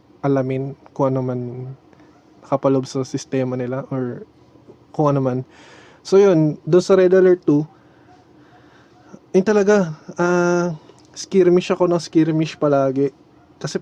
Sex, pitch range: male, 135-155 Hz